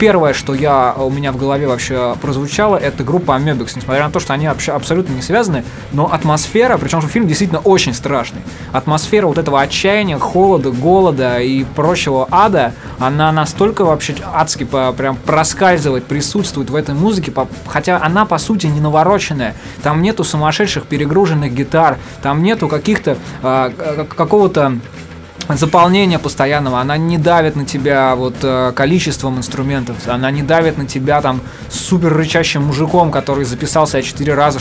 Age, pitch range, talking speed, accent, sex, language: 20-39, 130-160 Hz, 225 wpm, native, male, Russian